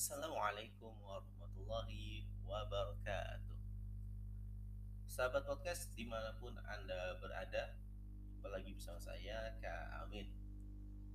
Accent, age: native, 30-49